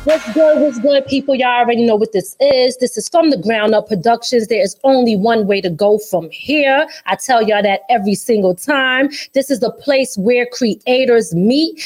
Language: English